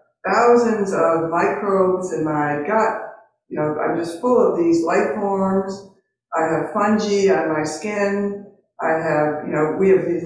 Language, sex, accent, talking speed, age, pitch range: English, female, American, 165 wpm, 60-79, 160-210 Hz